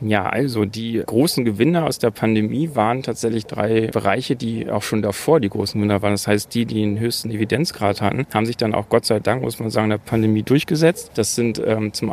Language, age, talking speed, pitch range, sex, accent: German, 40-59, 230 wpm, 105-120 Hz, male, German